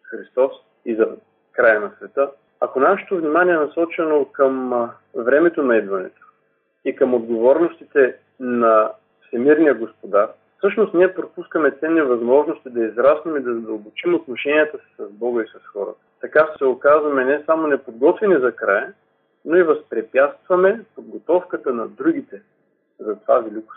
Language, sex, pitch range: Bulgarian, male, 120-175 Hz